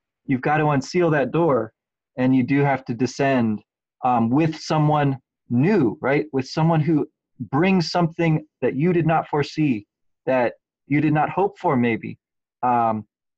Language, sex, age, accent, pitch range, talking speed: English, male, 30-49, American, 130-155 Hz, 155 wpm